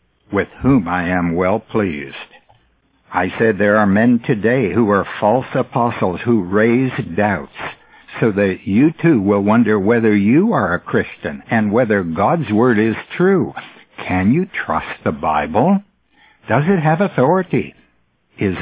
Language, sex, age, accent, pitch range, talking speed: English, male, 60-79, American, 100-140 Hz, 150 wpm